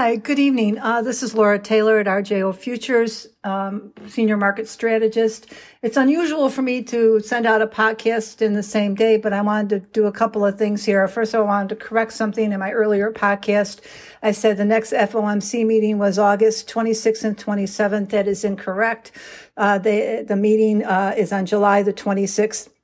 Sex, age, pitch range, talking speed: female, 60-79, 200-220 Hz, 190 wpm